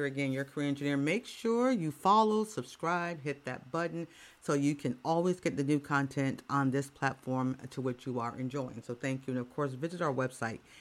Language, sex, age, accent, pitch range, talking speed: English, female, 40-59, American, 135-200 Hz, 205 wpm